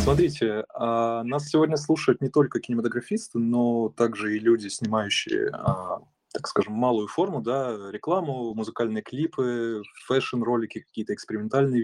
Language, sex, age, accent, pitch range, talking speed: Russian, male, 20-39, native, 110-130 Hz, 115 wpm